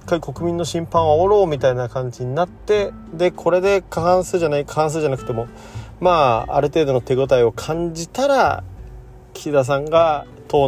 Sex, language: male, Japanese